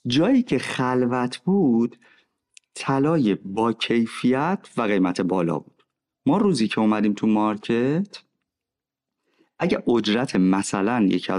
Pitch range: 100-140 Hz